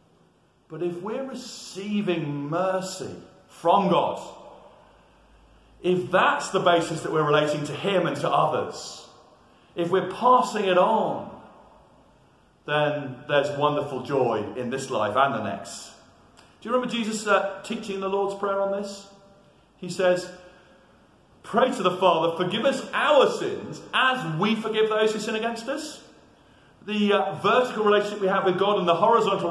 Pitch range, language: 175-225 Hz, English